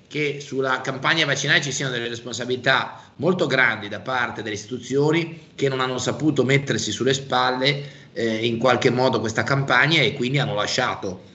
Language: Italian